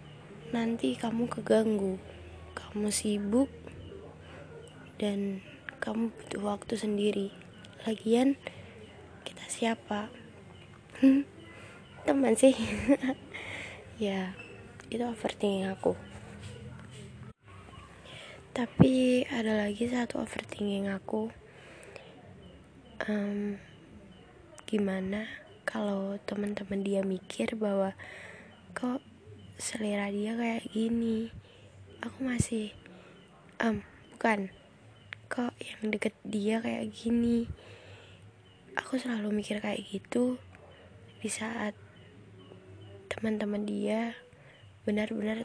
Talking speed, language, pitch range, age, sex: 75 wpm, Indonesian, 190-230 Hz, 20-39, female